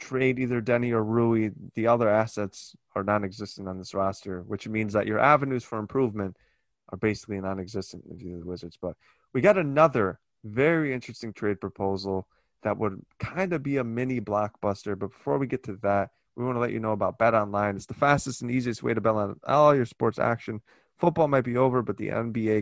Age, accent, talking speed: 20-39, American, 205 wpm